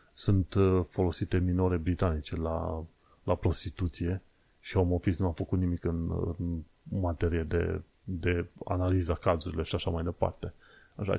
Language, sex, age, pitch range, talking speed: Romanian, male, 30-49, 90-110 Hz, 140 wpm